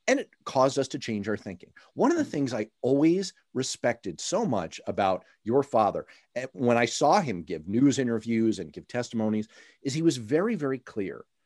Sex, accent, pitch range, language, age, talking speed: male, American, 110-160 Hz, English, 40-59, 190 wpm